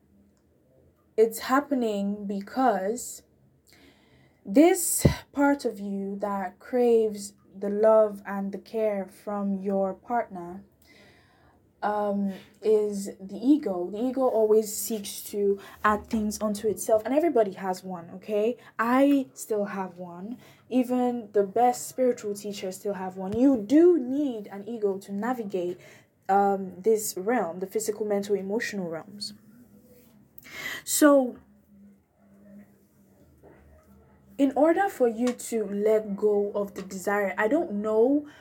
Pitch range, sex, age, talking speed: 200-235 Hz, female, 10-29, 120 wpm